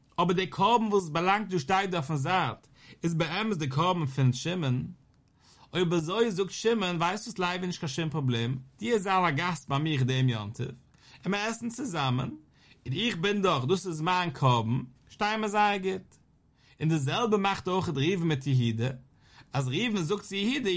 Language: English